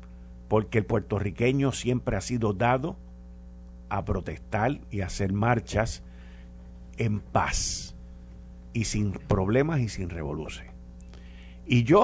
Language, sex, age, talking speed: Spanish, male, 50-69, 110 wpm